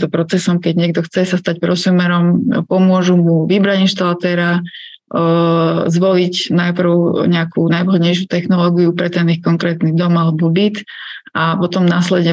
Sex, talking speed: female, 130 wpm